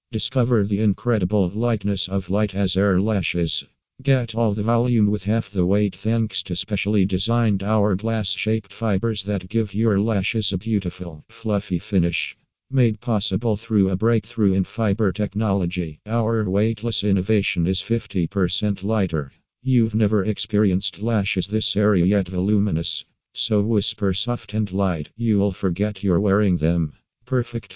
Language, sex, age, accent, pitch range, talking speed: English, male, 50-69, American, 95-110 Hz, 140 wpm